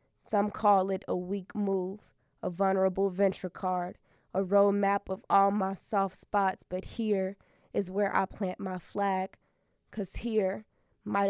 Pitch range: 185-200 Hz